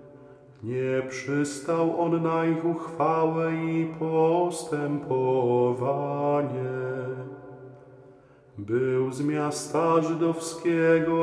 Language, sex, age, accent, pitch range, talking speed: Polish, male, 40-59, native, 130-165 Hz, 65 wpm